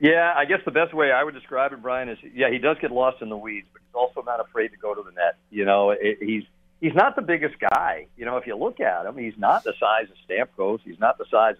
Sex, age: male, 50-69